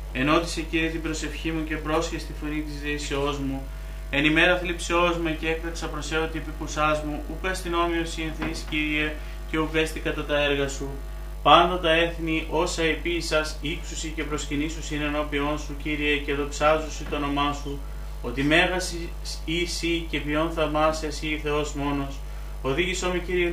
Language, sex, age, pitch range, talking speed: Greek, male, 30-49, 150-165 Hz, 155 wpm